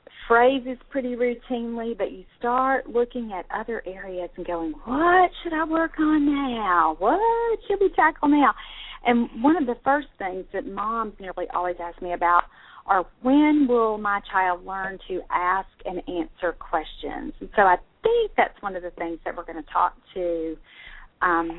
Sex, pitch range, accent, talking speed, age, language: female, 180-265 Hz, American, 175 wpm, 40-59, English